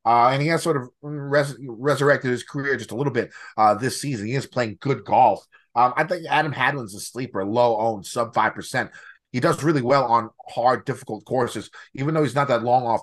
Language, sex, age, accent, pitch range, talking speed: English, male, 30-49, American, 115-145 Hz, 210 wpm